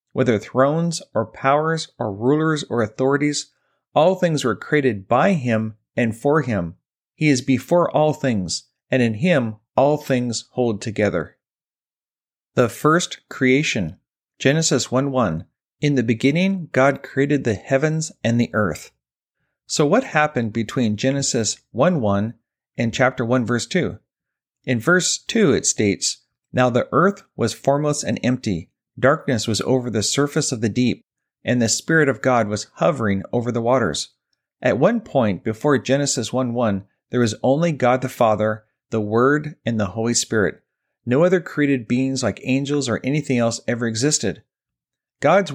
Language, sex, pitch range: English, male, 115-145 Hz